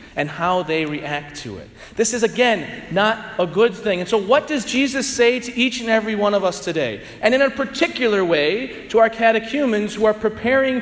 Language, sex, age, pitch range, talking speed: English, male, 40-59, 185-240 Hz, 210 wpm